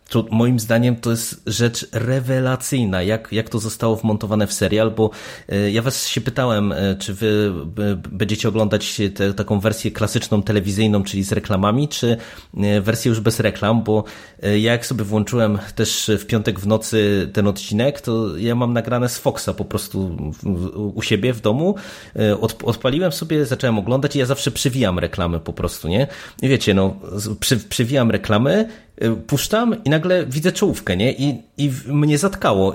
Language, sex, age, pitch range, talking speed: Polish, male, 30-49, 105-130 Hz, 160 wpm